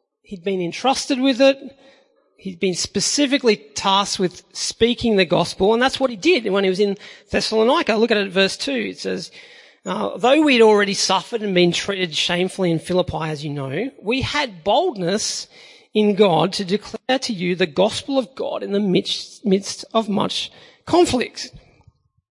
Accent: Australian